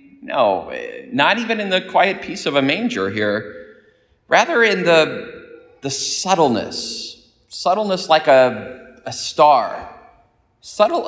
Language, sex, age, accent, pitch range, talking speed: English, male, 30-49, American, 120-180 Hz, 120 wpm